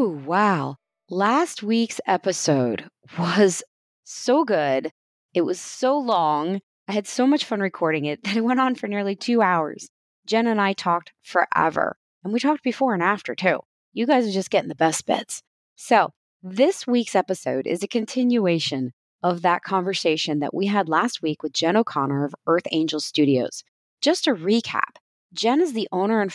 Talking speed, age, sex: 175 wpm, 30-49, female